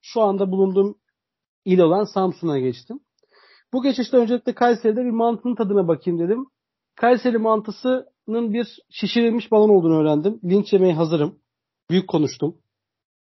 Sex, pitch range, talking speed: male, 180-235 Hz, 125 wpm